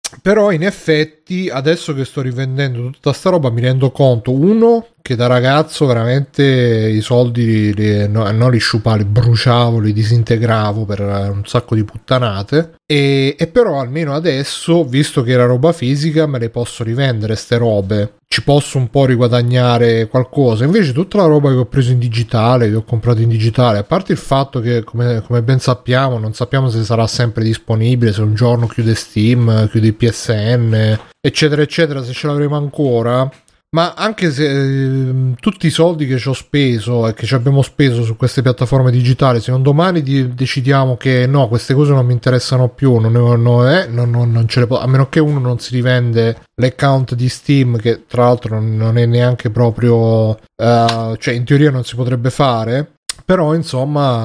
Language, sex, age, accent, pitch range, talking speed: Italian, male, 30-49, native, 115-140 Hz, 185 wpm